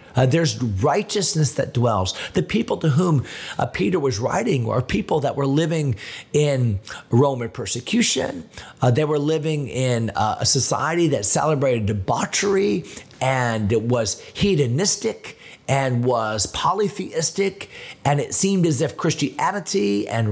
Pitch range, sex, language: 105-145 Hz, male, English